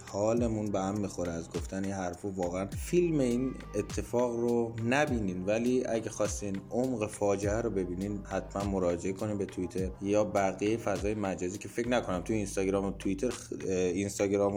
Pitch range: 100-140 Hz